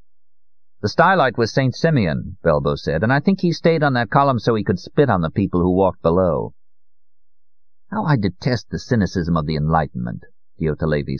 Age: 50-69